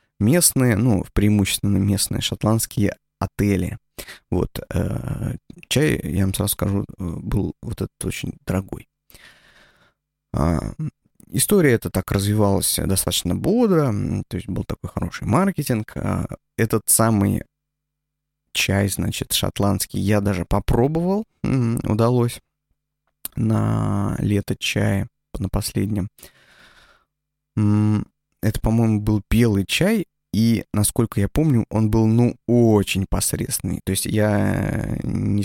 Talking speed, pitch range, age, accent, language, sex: 105 wpm, 100-120 Hz, 20-39, native, Russian, male